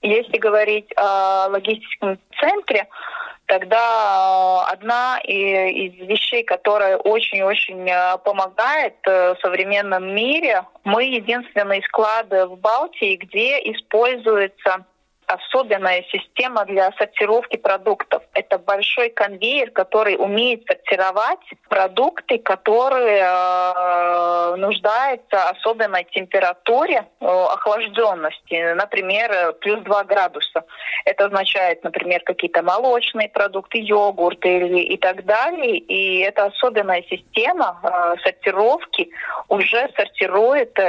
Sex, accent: female, native